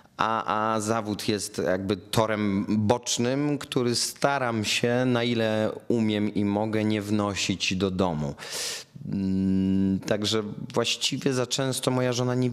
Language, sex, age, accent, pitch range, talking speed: Polish, male, 30-49, native, 95-115 Hz, 125 wpm